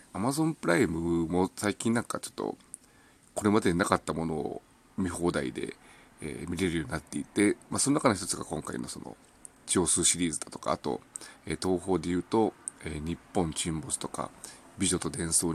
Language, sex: Japanese, male